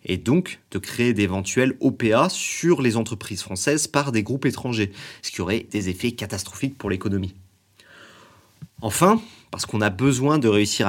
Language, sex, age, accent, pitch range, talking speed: French, male, 30-49, French, 95-130 Hz, 160 wpm